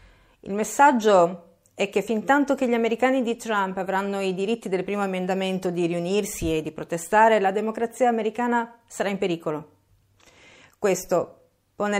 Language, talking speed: Italian, 150 wpm